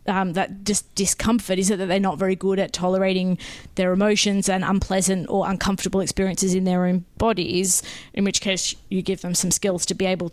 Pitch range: 185-205 Hz